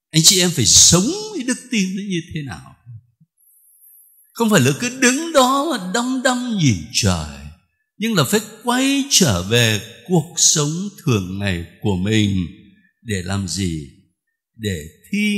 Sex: male